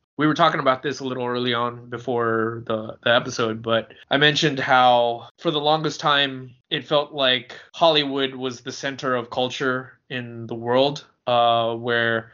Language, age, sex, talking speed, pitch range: English, 20-39, male, 170 wpm, 120-140 Hz